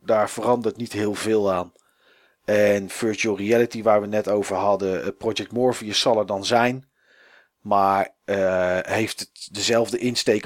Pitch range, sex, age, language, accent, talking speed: 105-130 Hz, male, 40-59, Dutch, Dutch, 150 wpm